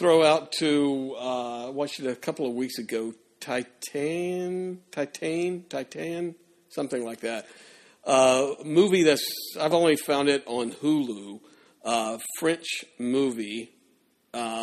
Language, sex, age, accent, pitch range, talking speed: English, male, 50-69, American, 120-150 Hz, 125 wpm